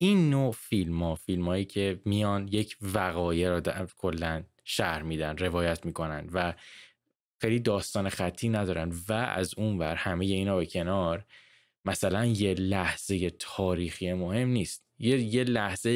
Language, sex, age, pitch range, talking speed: Persian, male, 20-39, 90-115 Hz, 145 wpm